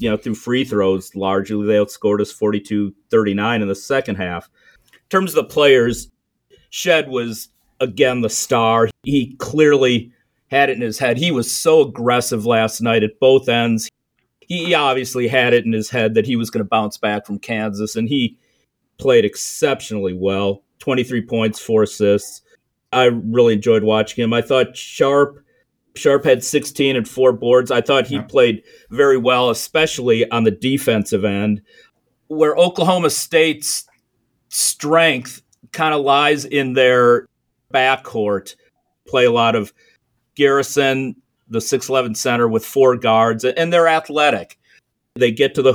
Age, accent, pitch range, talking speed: 40-59, American, 110-135 Hz, 155 wpm